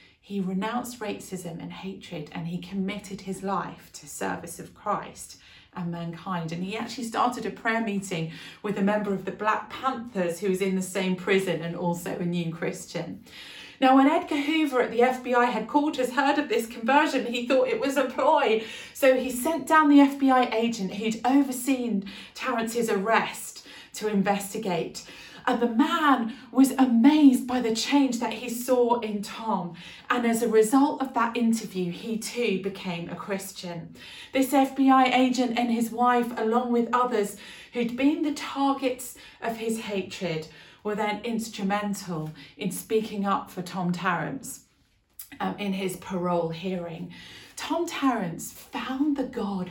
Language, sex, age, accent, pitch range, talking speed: English, female, 40-59, British, 190-255 Hz, 155 wpm